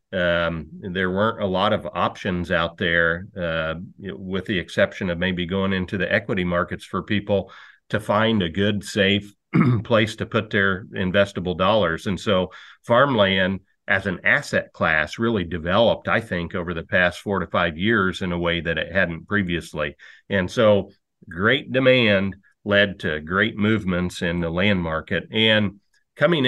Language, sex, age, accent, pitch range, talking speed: English, male, 50-69, American, 90-110 Hz, 165 wpm